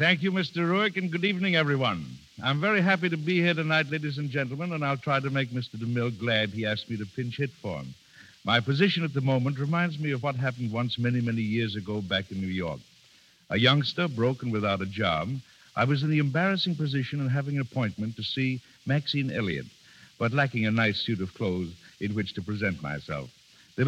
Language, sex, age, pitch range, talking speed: English, male, 60-79, 105-145 Hz, 215 wpm